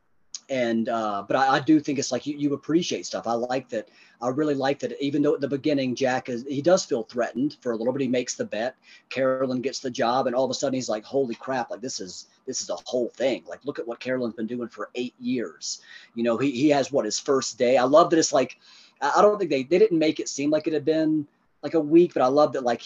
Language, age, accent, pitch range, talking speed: English, 40-59, American, 120-145 Hz, 275 wpm